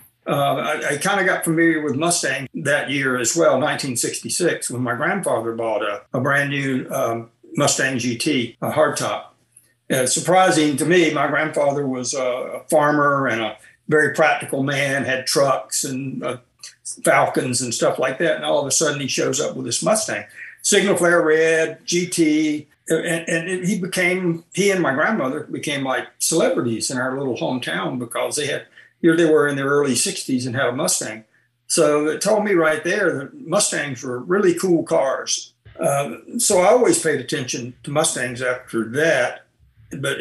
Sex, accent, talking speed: male, American, 175 wpm